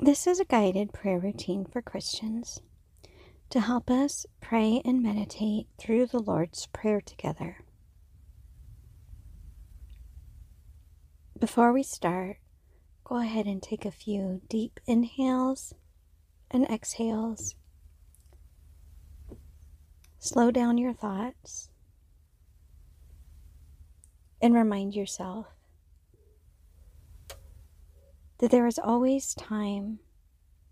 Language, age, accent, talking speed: English, 40-59, American, 85 wpm